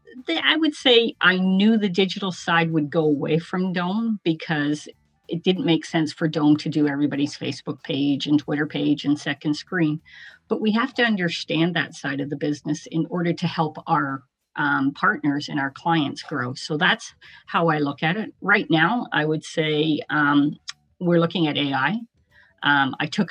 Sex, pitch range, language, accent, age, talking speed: female, 150-175 Hz, English, American, 40-59, 185 wpm